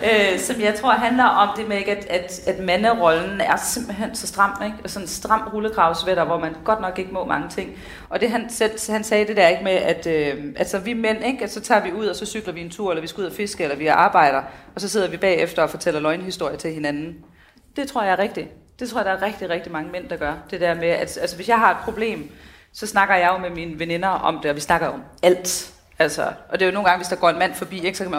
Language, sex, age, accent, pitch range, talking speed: Danish, female, 30-49, native, 170-205 Hz, 280 wpm